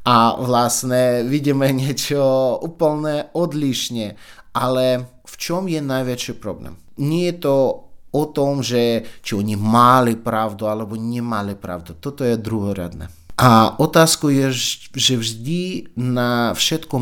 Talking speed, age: 125 wpm, 30-49